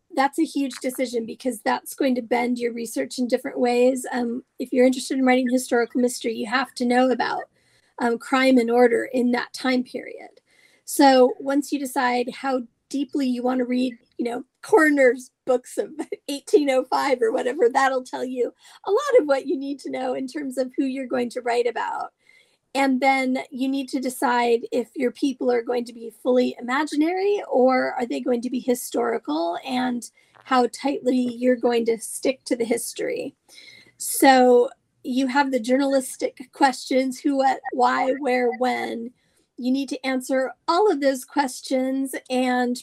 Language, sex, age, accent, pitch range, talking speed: English, female, 40-59, American, 245-280 Hz, 175 wpm